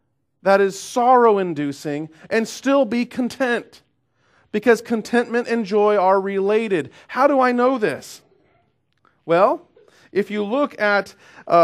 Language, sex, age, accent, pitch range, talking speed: English, male, 40-59, American, 165-240 Hz, 125 wpm